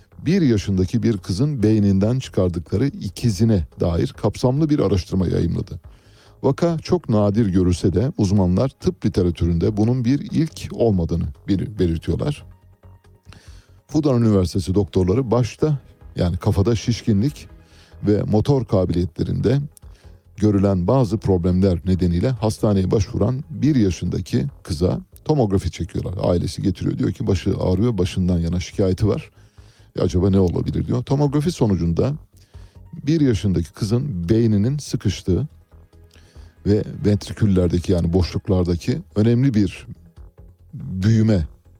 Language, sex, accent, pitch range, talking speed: Turkish, male, native, 90-120 Hz, 110 wpm